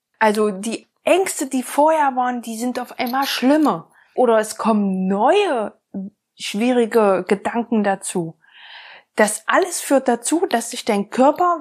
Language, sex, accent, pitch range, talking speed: German, female, German, 205-290 Hz, 135 wpm